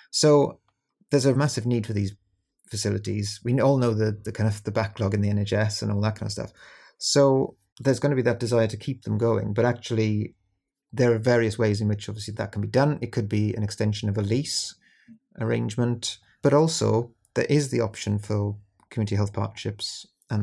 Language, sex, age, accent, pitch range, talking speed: English, male, 30-49, British, 105-120 Hz, 205 wpm